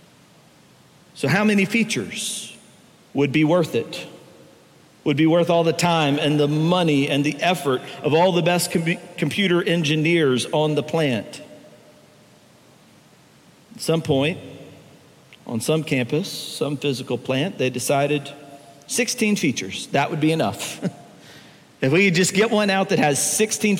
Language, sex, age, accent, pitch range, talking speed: English, male, 50-69, American, 135-170 Hz, 140 wpm